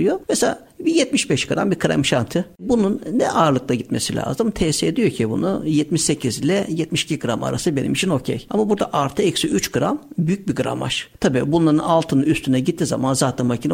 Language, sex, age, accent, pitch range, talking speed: Turkish, male, 60-79, native, 150-235 Hz, 185 wpm